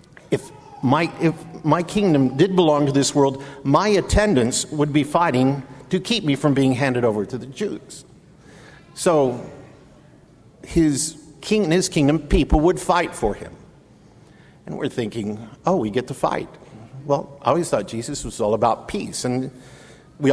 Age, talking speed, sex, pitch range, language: 50-69, 160 wpm, male, 125-160 Hz, English